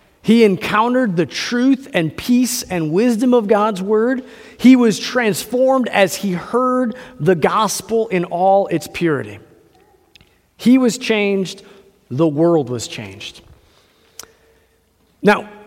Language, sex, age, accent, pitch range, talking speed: English, male, 30-49, American, 165-235 Hz, 120 wpm